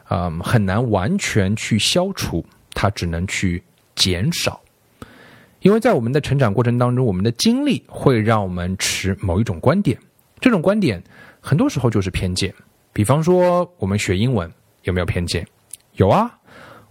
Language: Chinese